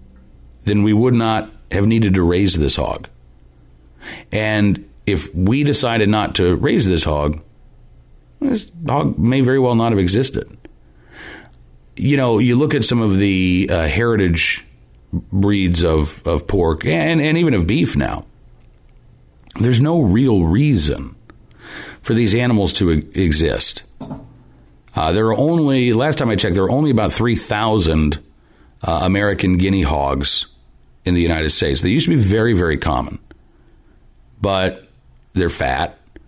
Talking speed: 145 wpm